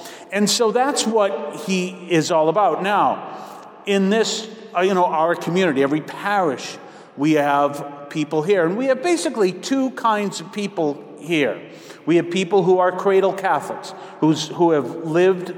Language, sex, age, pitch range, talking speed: English, male, 50-69, 145-185 Hz, 160 wpm